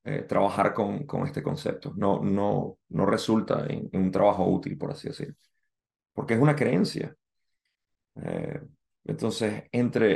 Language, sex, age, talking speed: Spanish, male, 30-49, 150 wpm